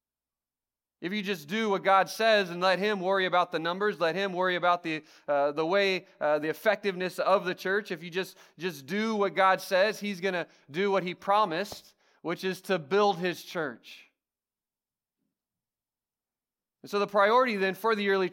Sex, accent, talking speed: male, American, 185 wpm